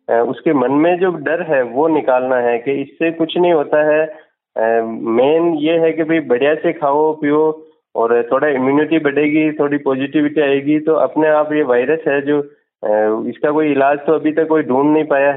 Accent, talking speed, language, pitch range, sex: native, 185 wpm, Hindi, 130-155 Hz, male